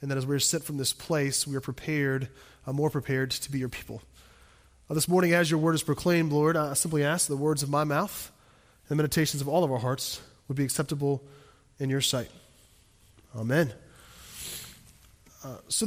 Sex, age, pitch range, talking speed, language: male, 20-39, 145-195 Hz, 205 wpm, English